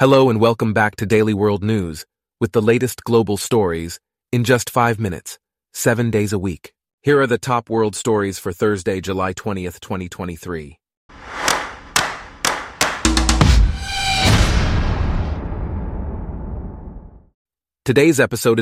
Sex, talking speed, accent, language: male, 110 wpm, American, English